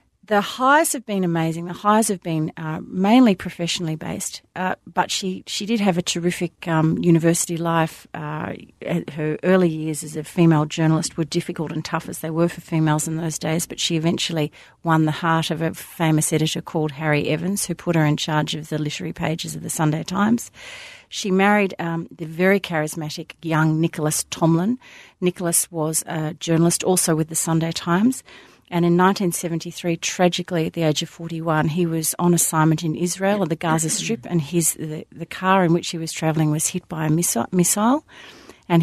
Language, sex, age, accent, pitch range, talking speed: English, female, 40-59, Australian, 160-185 Hz, 190 wpm